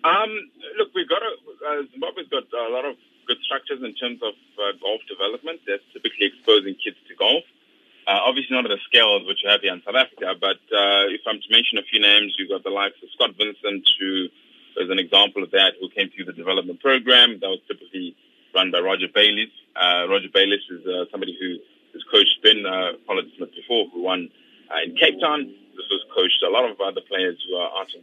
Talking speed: 225 wpm